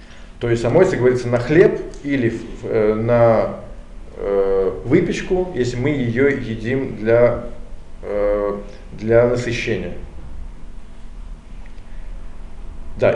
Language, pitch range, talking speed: Russian, 105-130 Hz, 80 wpm